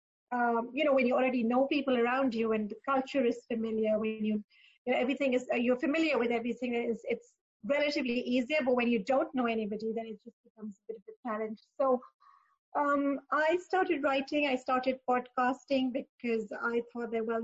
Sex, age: female, 30-49